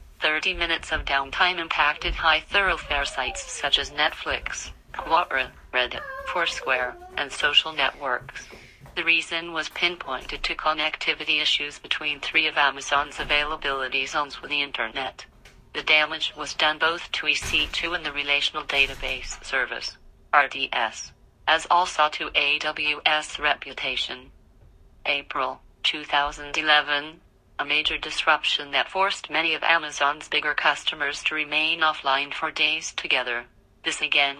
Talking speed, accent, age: 125 wpm, American, 40-59